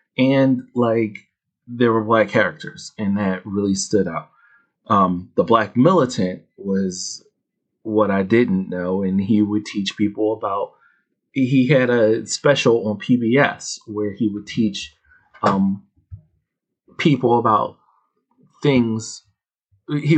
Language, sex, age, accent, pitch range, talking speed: English, male, 30-49, American, 100-125 Hz, 120 wpm